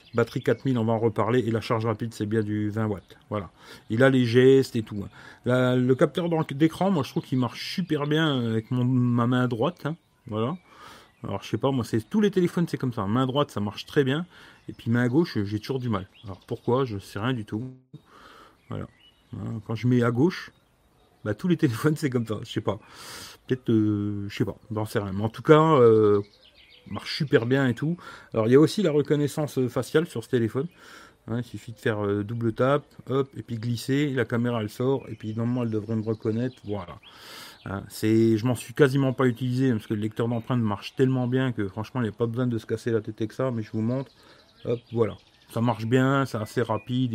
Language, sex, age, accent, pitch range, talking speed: French, male, 40-59, French, 110-135 Hz, 235 wpm